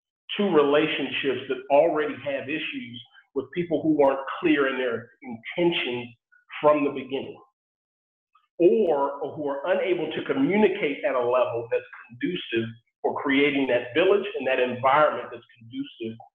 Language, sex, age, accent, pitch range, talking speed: English, male, 40-59, American, 125-165 Hz, 135 wpm